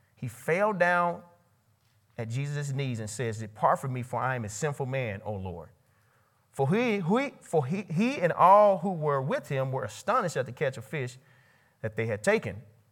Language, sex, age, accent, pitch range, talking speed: English, male, 30-49, American, 125-190 Hz, 195 wpm